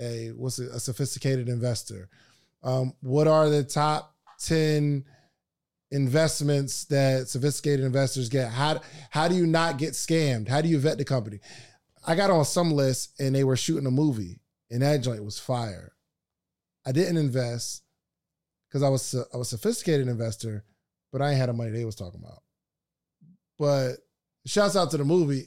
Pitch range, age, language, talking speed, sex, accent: 125-160 Hz, 20-39, English, 175 wpm, male, American